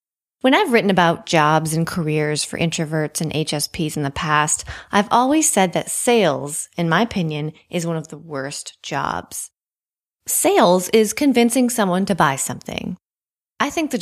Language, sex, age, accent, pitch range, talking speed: English, female, 30-49, American, 160-220 Hz, 165 wpm